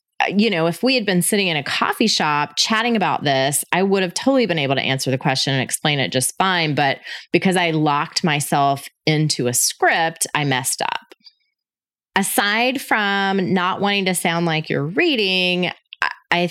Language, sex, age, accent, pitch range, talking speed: English, female, 20-39, American, 140-180 Hz, 180 wpm